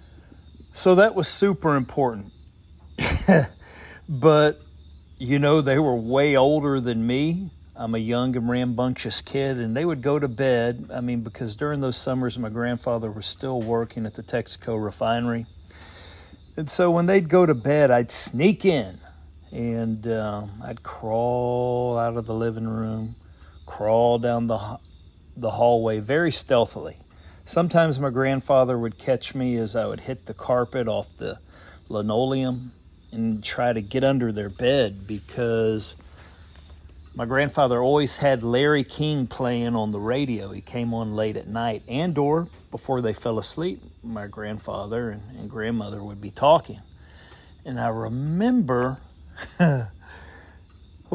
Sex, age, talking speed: male, 40-59, 145 wpm